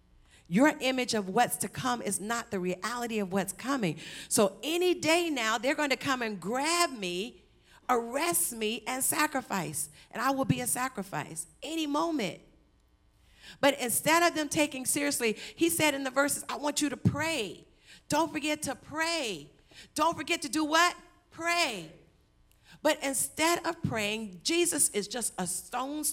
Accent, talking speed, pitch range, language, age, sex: American, 165 wpm, 180-270 Hz, English, 50-69, female